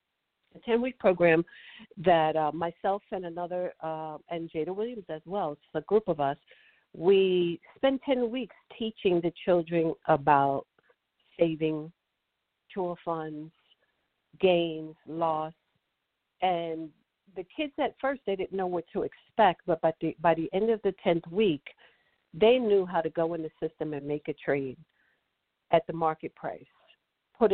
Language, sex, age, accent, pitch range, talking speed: English, female, 50-69, American, 160-200 Hz, 150 wpm